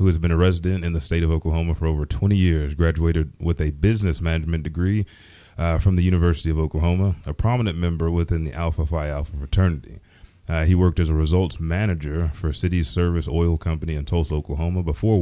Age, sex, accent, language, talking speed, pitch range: 30-49, male, American, English, 200 wpm, 80-95 Hz